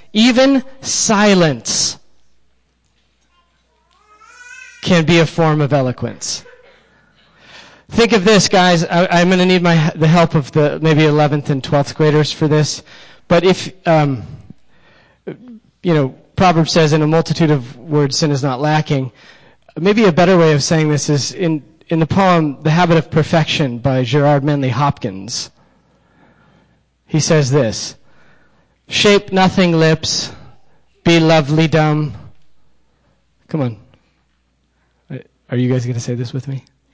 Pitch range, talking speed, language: 135-170 Hz, 140 wpm, English